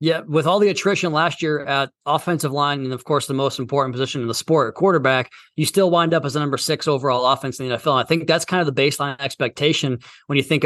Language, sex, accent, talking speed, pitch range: English, male, American, 255 wpm, 130-150 Hz